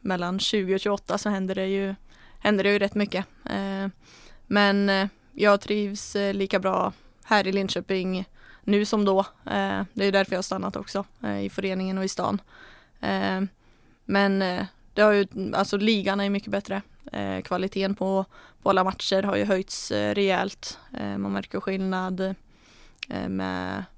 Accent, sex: Swedish, female